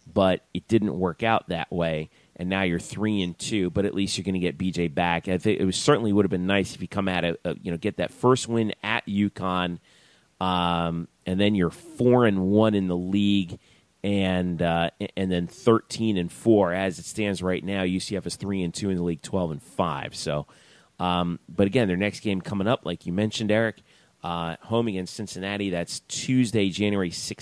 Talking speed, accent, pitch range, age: 205 wpm, American, 90-105 Hz, 30-49